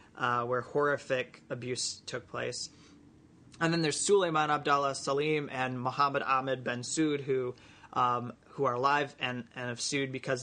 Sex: male